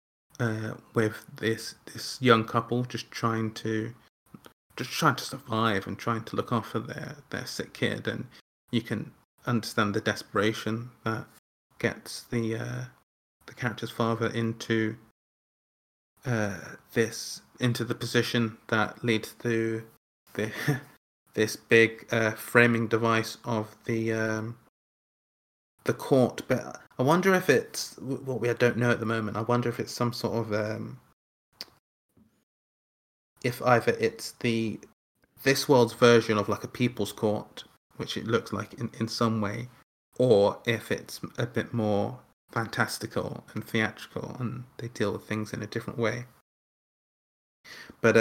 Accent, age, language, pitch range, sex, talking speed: British, 20-39, English, 110-120 Hz, male, 145 wpm